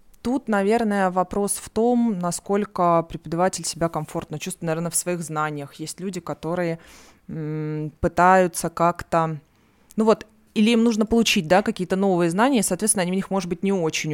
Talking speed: 160 wpm